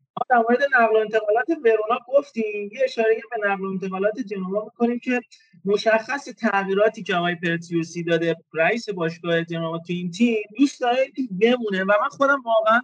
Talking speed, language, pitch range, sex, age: 165 wpm, Persian, 175-225 Hz, male, 30-49